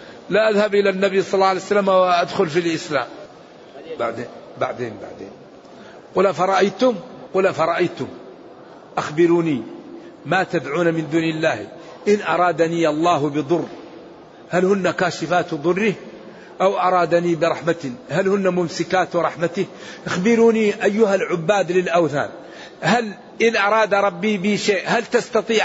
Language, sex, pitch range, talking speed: Arabic, male, 170-205 Hz, 115 wpm